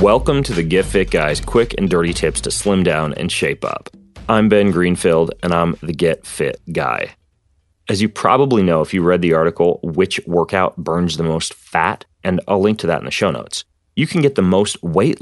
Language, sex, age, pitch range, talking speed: English, male, 30-49, 85-110 Hz, 215 wpm